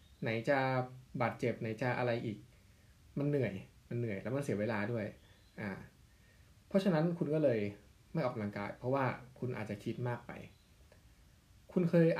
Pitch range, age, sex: 105-150 Hz, 20-39, male